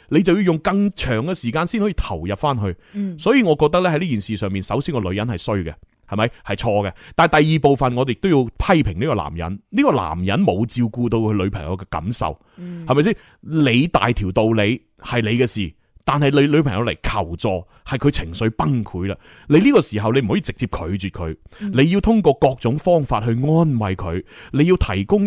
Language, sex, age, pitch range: Chinese, male, 30-49, 110-155 Hz